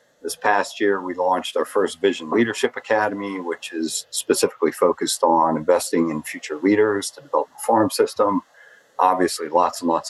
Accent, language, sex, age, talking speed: American, English, male, 50-69, 165 wpm